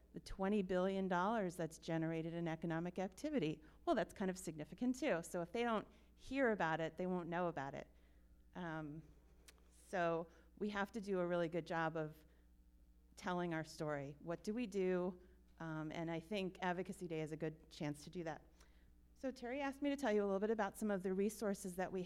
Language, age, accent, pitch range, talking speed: English, 40-59, American, 165-200 Hz, 200 wpm